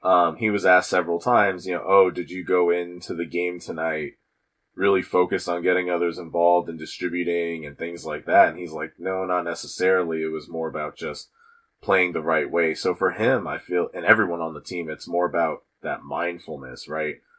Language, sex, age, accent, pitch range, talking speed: English, male, 30-49, American, 80-90 Hz, 205 wpm